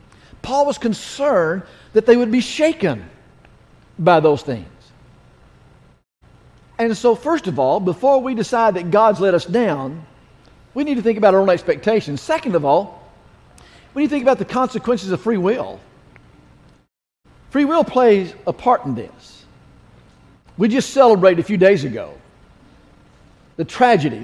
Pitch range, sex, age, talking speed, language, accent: 185-250 Hz, male, 50-69, 150 wpm, English, American